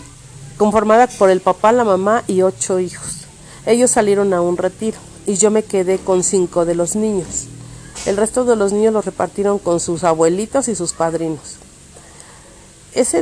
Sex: female